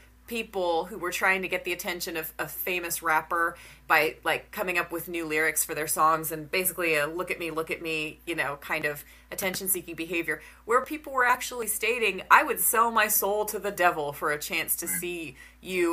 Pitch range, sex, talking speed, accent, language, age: 155-200 Hz, female, 215 wpm, American, English, 30-49